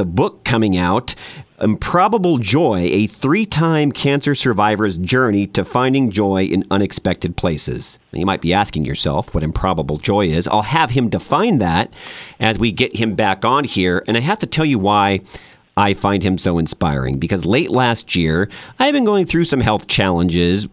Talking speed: 175 wpm